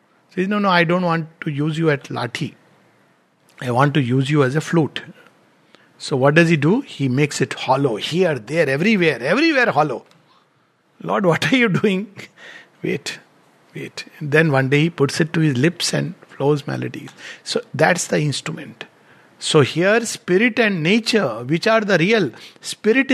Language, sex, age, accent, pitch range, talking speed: English, male, 60-79, Indian, 155-210 Hz, 175 wpm